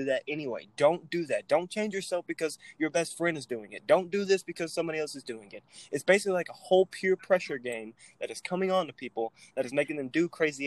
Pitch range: 120-155 Hz